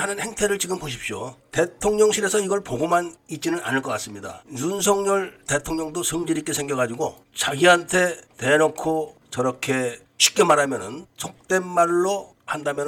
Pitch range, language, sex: 130-175 Hz, Korean, male